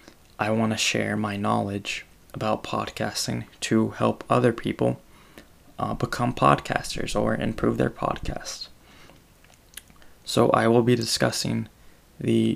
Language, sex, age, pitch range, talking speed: English, male, 20-39, 110-120 Hz, 120 wpm